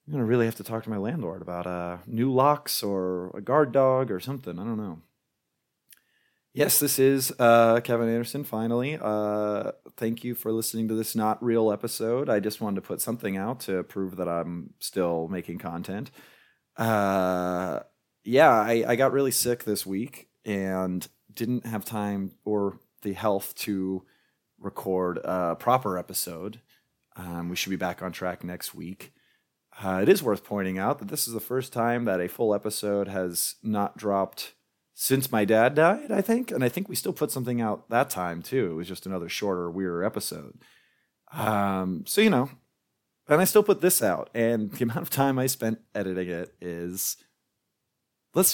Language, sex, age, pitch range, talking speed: English, male, 30-49, 95-125 Hz, 185 wpm